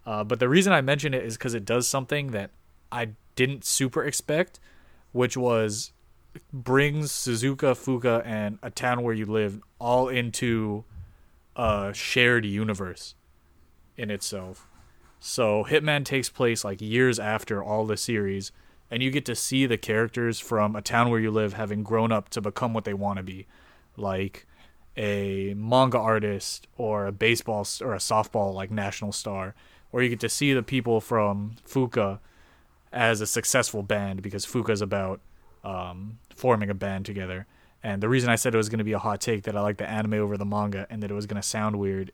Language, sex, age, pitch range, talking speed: English, male, 30-49, 100-120 Hz, 190 wpm